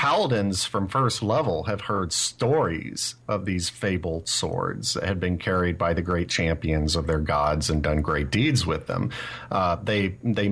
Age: 40-59